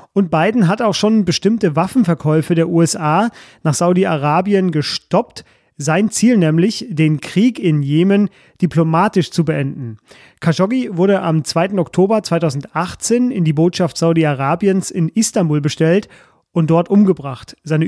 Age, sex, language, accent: 30-49, male, German, German